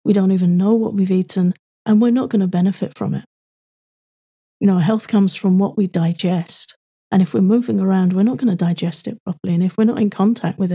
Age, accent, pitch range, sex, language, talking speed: 40-59, British, 180-215 Hz, female, English, 235 wpm